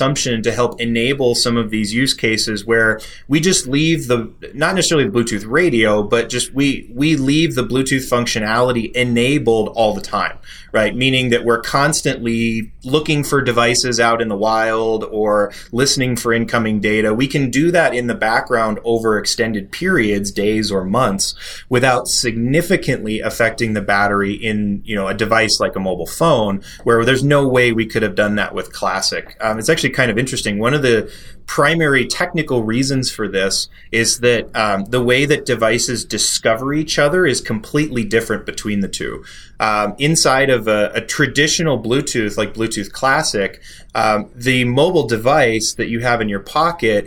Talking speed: 175 wpm